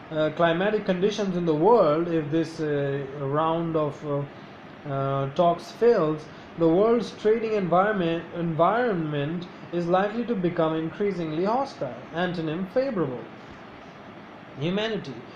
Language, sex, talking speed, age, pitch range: English, male, 115 wpm, 20-39, 160-200 Hz